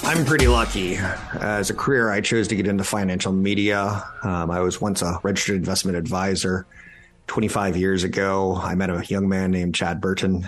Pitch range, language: 85-100 Hz, English